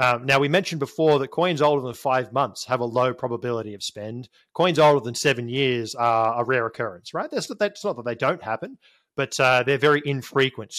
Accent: Australian